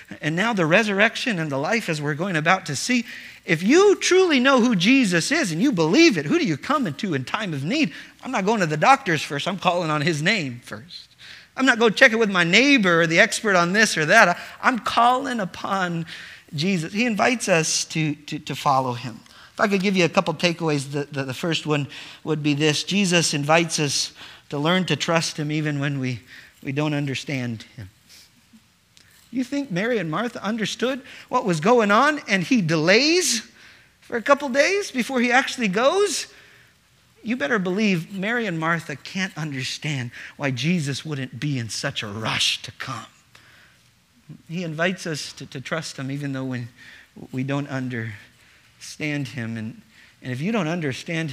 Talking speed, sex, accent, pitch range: 190 wpm, male, American, 145-220 Hz